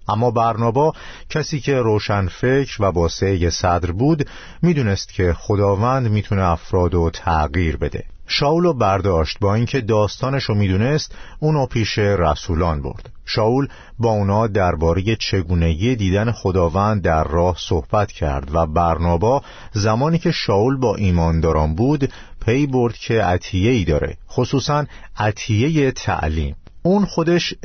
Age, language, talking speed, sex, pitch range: 50-69, Persian, 130 wpm, male, 90-125 Hz